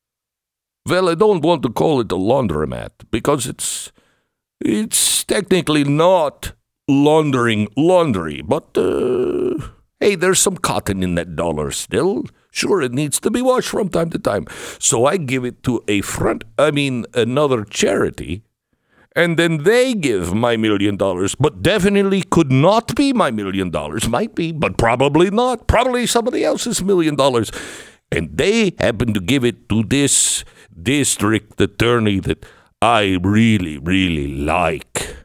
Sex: male